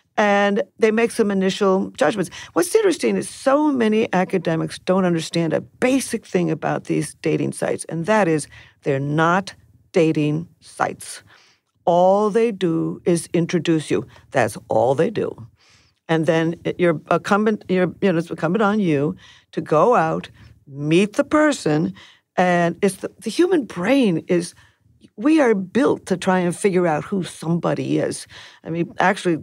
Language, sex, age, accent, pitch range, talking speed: English, female, 50-69, American, 165-205 Hz, 155 wpm